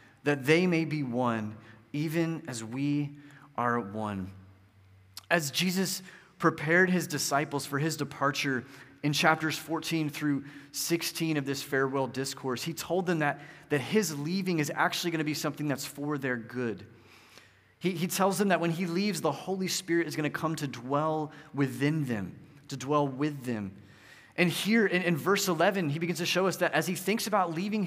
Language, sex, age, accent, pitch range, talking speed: English, male, 30-49, American, 135-170 Hz, 175 wpm